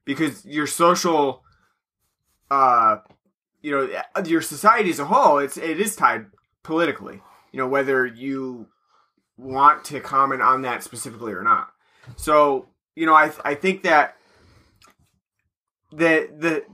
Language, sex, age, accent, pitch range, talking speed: English, male, 20-39, American, 130-160 Hz, 135 wpm